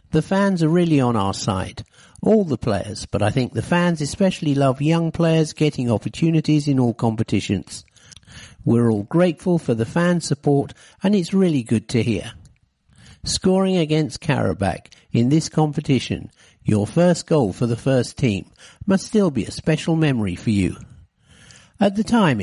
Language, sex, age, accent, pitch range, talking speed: English, male, 60-79, British, 115-165 Hz, 165 wpm